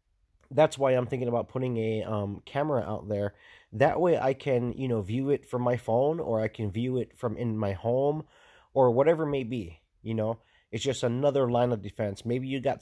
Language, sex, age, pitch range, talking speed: English, male, 30-49, 110-130 Hz, 215 wpm